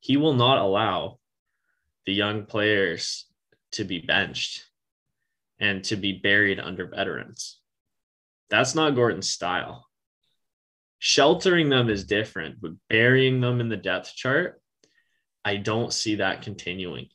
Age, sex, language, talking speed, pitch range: 20-39, male, English, 125 wpm, 100-115 Hz